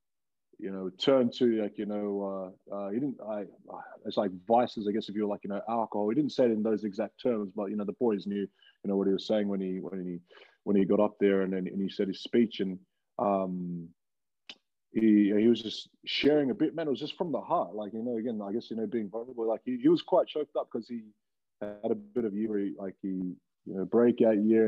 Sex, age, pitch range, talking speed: male, 20-39, 95-110 Hz, 255 wpm